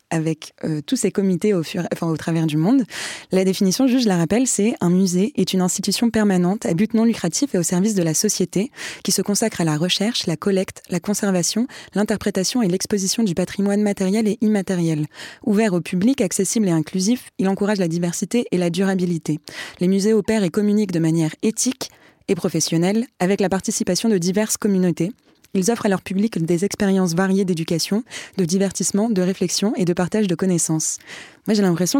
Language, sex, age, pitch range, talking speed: French, female, 20-39, 175-210 Hz, 195 wpm